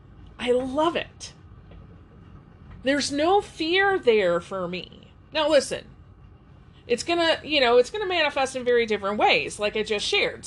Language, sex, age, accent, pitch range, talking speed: English, female, 30-49, American, 220-310 Hz, 160 wpm